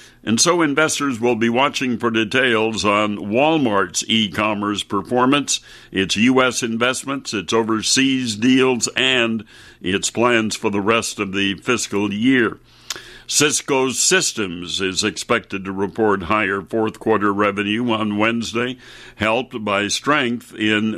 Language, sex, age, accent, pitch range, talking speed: English, male, 60-79, American, 105-125 Hz, 125 wpm